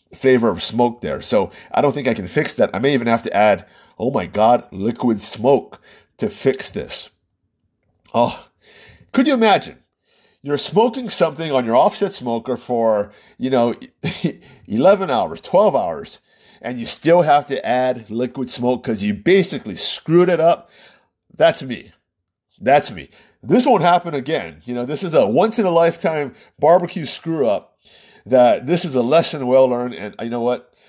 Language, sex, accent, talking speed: English, male, American, 165 wpm